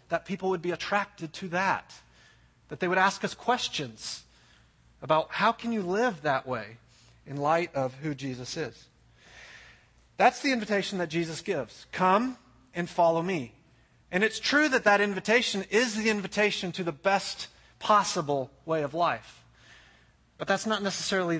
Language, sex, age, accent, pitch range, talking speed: English, male, 30-49, American, 150-210 Hz, 155 wpm